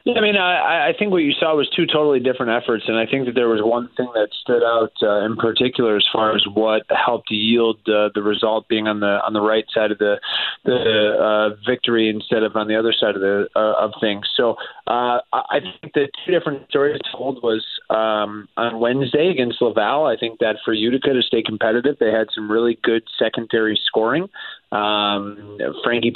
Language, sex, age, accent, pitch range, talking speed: English, male, 30-49, American, 110-125 Hz, 210 wpm